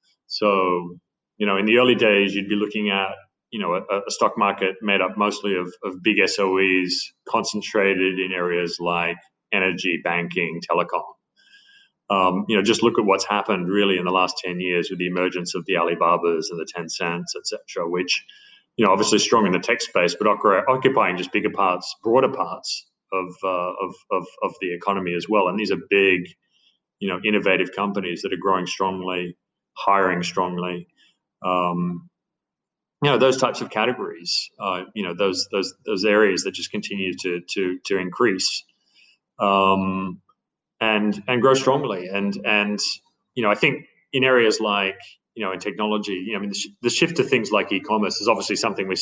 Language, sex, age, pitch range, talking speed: English, male, 30-49, 90-105 Hz, 180 wpm